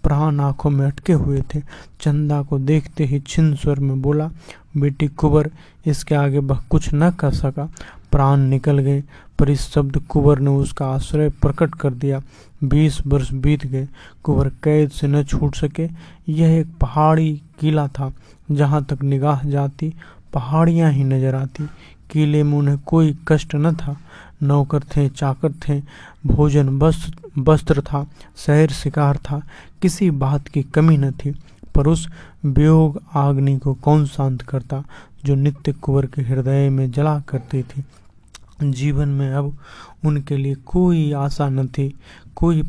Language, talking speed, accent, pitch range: Hindi, 155 wpm, native, 140-155 Hz